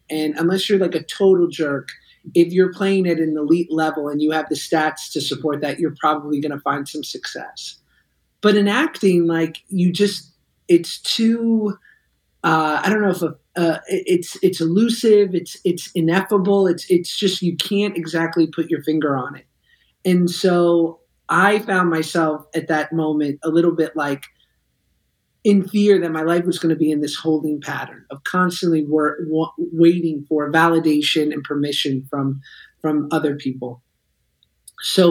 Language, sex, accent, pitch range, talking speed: English, male, American, 155-180 Hz, 165 wpm